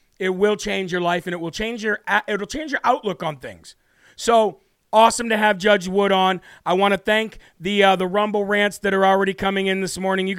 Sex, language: male, English